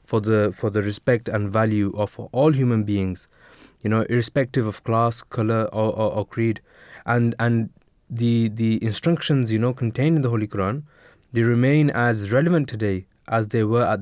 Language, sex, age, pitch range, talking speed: English, male, 20-39, 100-115 Hz, 180 wpm